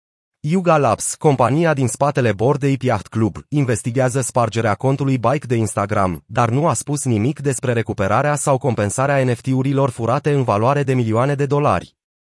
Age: 30-49